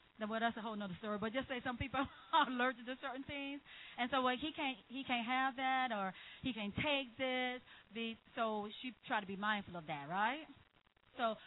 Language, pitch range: English, 195-255 Hz